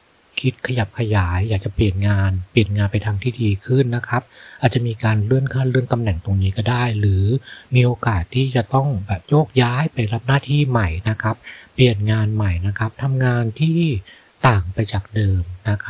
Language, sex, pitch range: Thai, male, 105-130 Hz